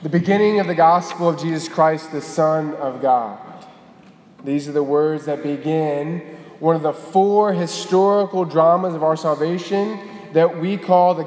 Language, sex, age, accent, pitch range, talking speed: English, male, 20-39, American, 160-195 Hz, 165 wpm